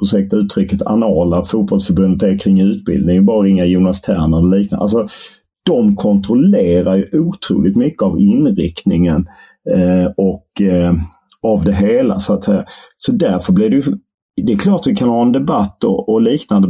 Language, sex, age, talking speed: English, male, 40-59, 165 wpm